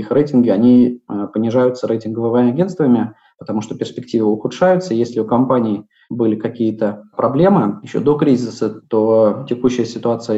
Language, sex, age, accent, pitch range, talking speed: Russian, male, 20-39, native, 115-125 Hz, 125 wpm